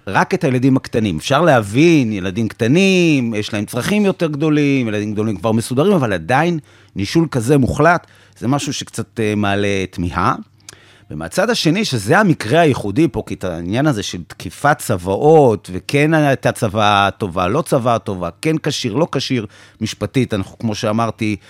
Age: 30-49